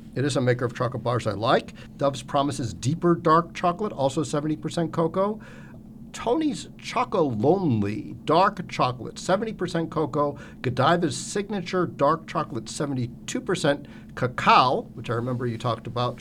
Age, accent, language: 50-69, American, English